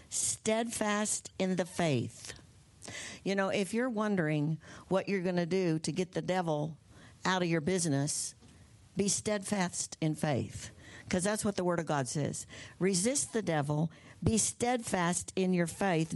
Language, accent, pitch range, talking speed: English, American, 150-195 Hz, 155 wpm